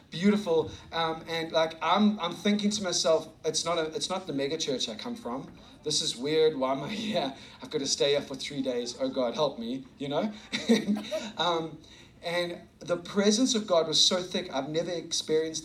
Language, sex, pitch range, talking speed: English, male, 160-210 Hz, 205 wpm